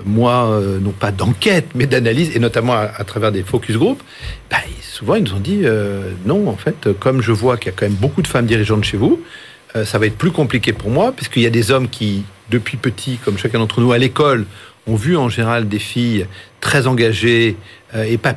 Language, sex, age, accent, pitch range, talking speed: French, male, 40-59, French, 110-135 Hz, 235 wpm